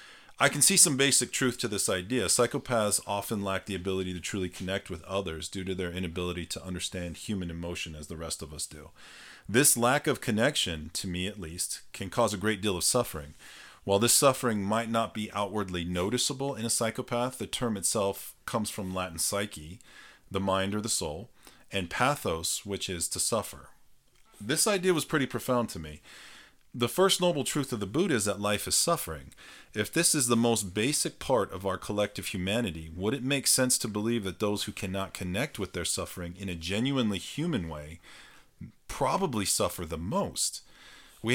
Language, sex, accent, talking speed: English, male, American, 190 wpm